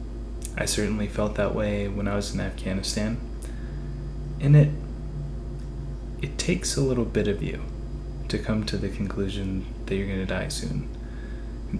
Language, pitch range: English, 95-115 Hz